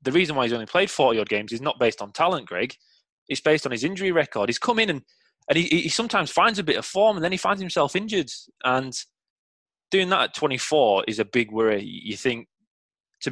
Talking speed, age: 230 wpm, 20-39